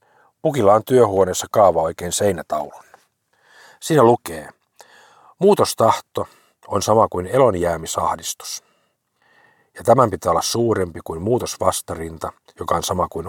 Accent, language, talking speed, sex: native, Finnish, 110 wpm, male